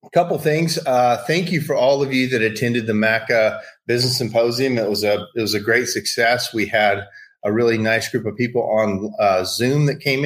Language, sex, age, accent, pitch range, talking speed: English, male, 30-49, American, 105-125 Hz, 210 wpm